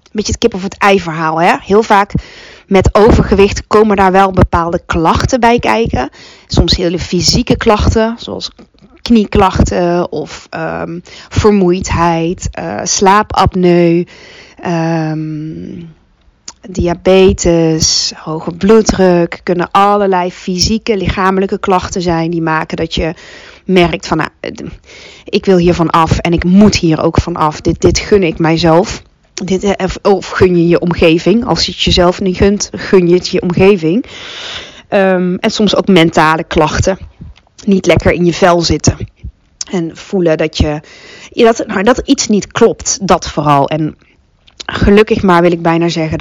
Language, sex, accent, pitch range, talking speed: Dutch, female, Dutch, 165-210 Hz, 140 wpm